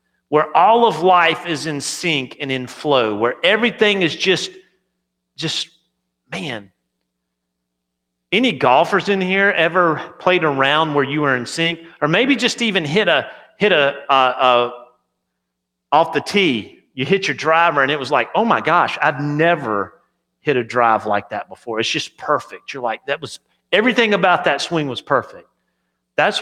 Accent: American